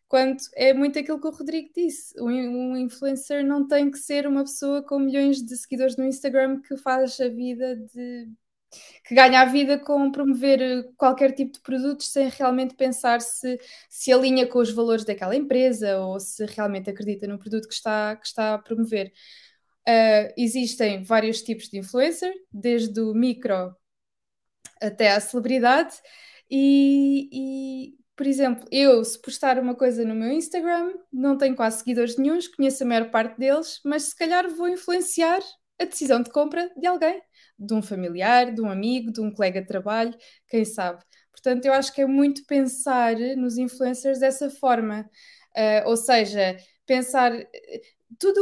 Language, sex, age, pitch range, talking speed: Portuguese, female, 20-39, 230-280 Hz, 165 wpm